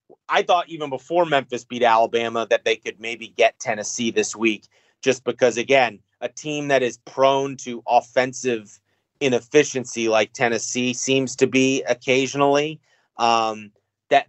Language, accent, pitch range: English, American, 120-155 Hz